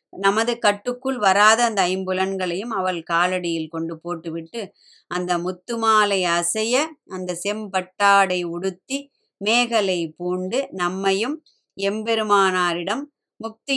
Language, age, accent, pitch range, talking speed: Tamil, 20-39, native, 180-230 Hz, 85 wpm